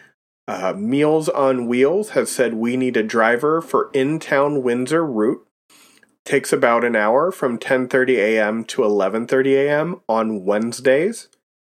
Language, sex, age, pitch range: English, male, 30-49, 120-150 Hz